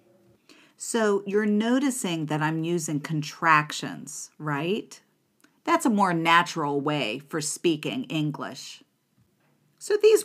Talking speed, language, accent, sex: 105 wpm, English, American, female